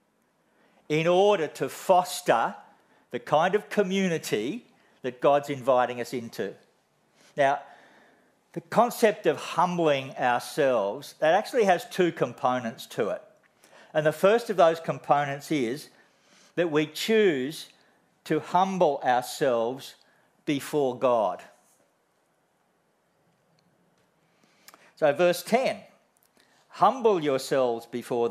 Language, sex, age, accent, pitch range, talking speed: English, male, 50-69, Australian, 130-180 Hz, 100 wpm